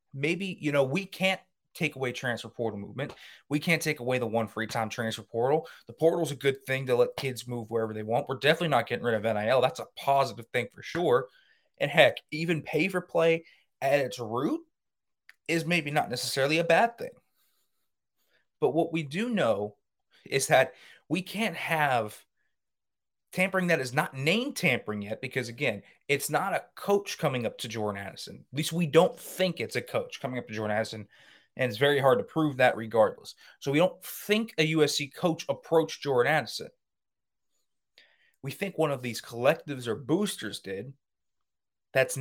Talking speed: 185 wpm